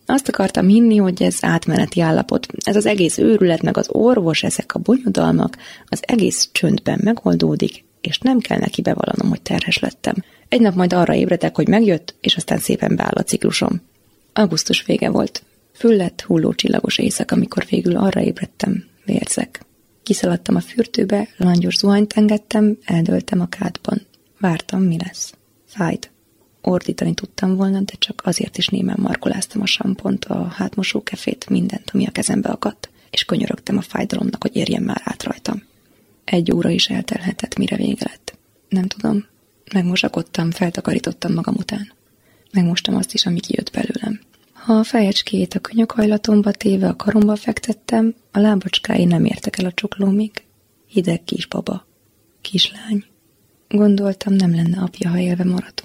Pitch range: 180-220 Hz